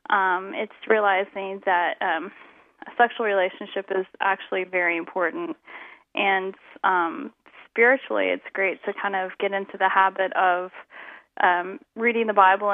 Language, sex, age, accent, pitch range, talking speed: English, female, 10-29, American, 190-220 Hz, 135 wpm